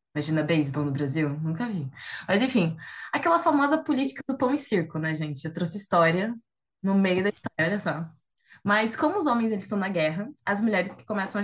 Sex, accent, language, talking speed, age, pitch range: female, Brazilian, Portuguese, 205 wpm, 20-39, 165-240 Hz